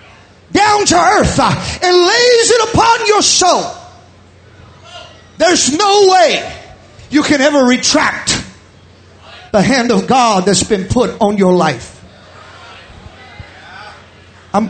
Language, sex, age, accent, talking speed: English, male, 40-59, American, 110 wpm